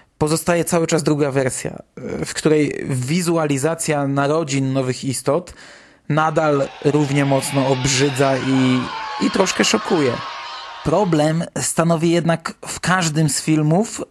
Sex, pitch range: male, 140-175 Hz